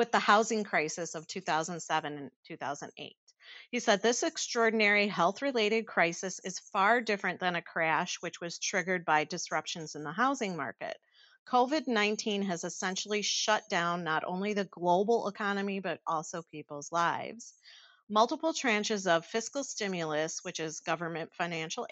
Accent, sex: American, female